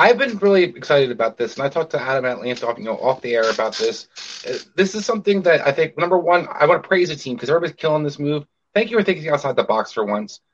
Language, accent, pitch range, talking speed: English, American, 120-165 Hz, 275 wpm